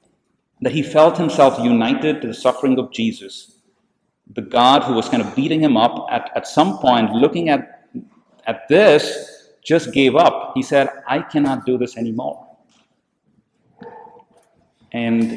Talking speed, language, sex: 150 wpm, English, male